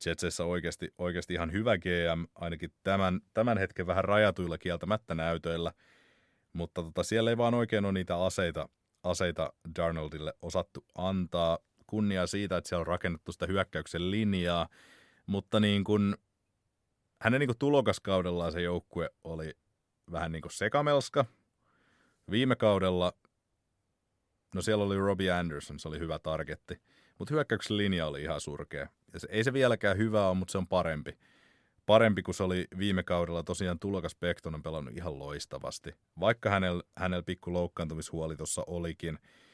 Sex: male